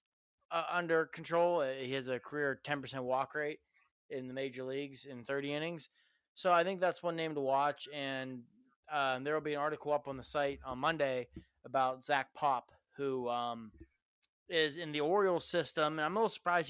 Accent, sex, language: American, male, English